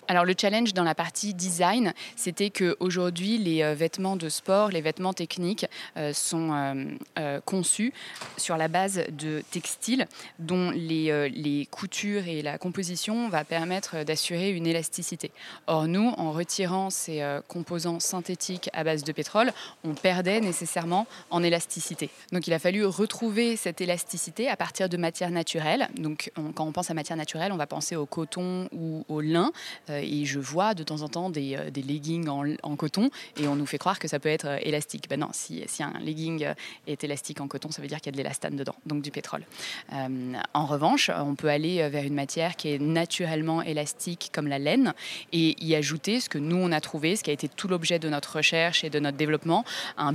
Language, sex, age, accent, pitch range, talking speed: French, female, 20-39, French, 150-180 Hz, 200 wpm